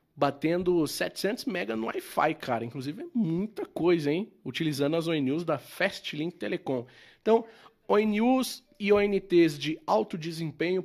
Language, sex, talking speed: Portuguese, male, 135 wpm